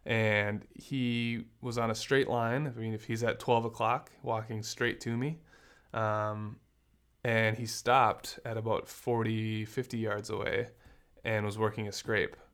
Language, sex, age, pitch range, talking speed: English, male, 20-39, 105-120 Hz, 160 wpm